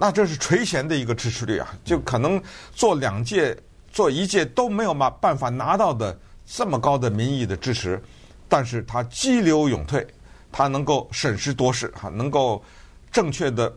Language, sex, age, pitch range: Chinese, male, 50-69, 105-150 Hz